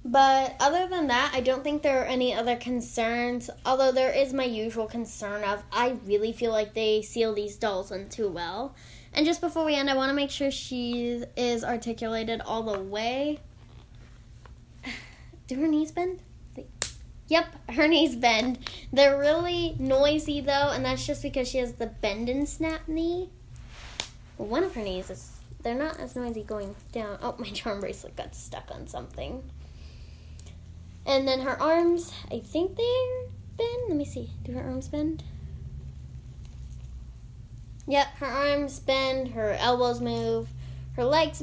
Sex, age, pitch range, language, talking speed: female, 10-29, 205-275 Hz, English, 160 wpm